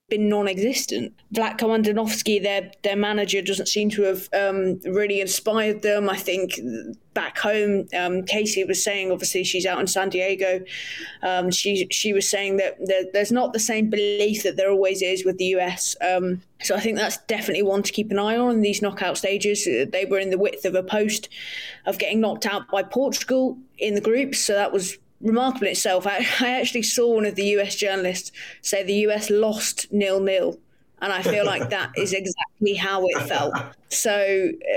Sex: female